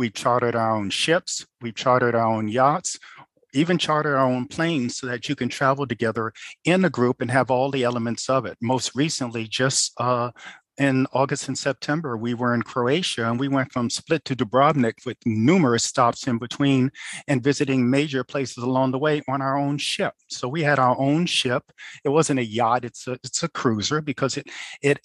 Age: 50-69